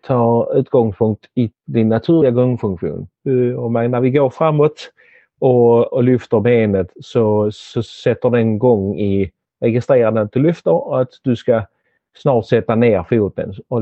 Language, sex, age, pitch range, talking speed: Swedish, male, 40-59, 105-125 Hz, 150 wpm